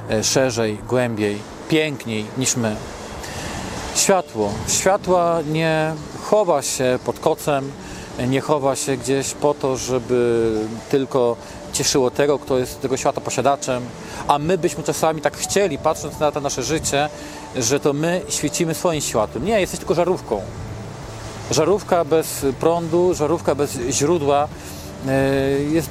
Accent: native